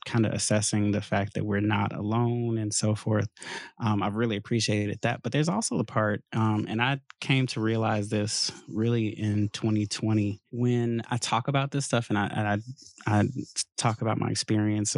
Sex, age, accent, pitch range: male, 20-39, American, 105-120 Hz